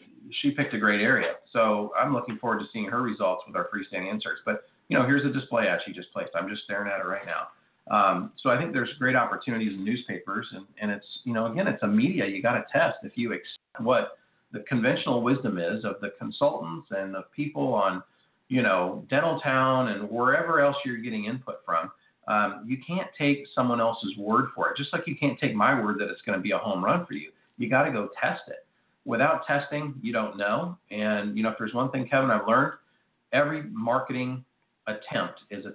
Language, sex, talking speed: English, male, 225 wpm